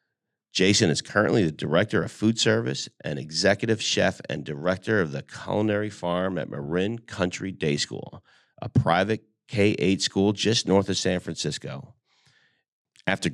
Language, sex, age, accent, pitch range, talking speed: English, male, 40-59, American, 85-110 Hz, 145 wpm